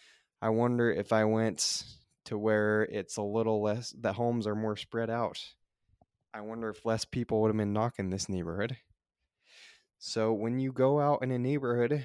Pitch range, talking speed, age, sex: 105-125 Hz, 175 wpm, 20-39, male